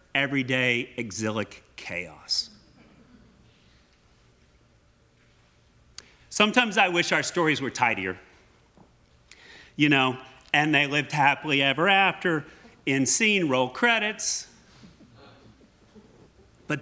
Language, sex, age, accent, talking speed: English, male, 40-59, American, 80 wpm